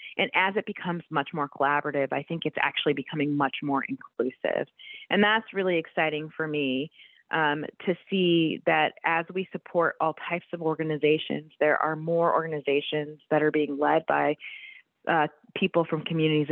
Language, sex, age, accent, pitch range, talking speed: English, female, 30-49, American, 150-180 Hz, 165 wpm